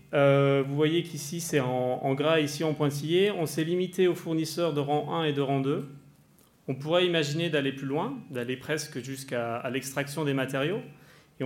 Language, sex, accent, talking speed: French, male, French, 195 wpm